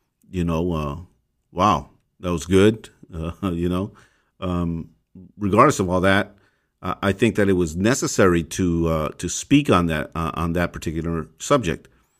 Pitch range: 85-105 Hz